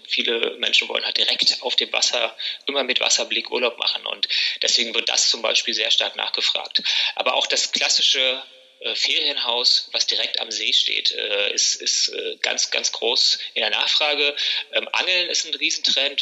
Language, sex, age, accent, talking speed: German, male, 20-39, German, 180 wpm